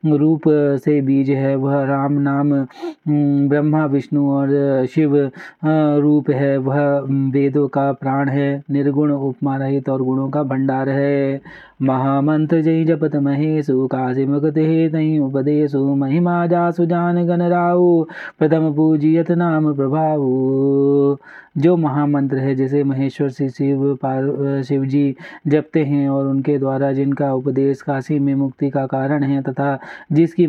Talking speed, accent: 130 wpm, native